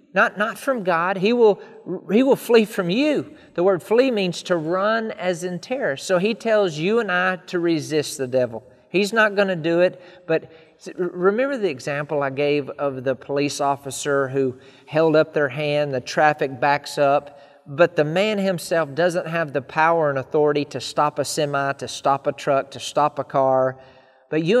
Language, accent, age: English, American, 40-59